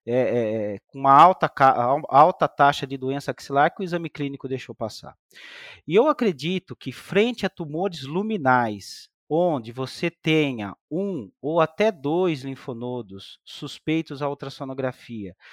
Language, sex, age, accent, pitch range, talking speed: Portuguese, male, 40-59, Brazilian, 135-200 Hz, 130 wpm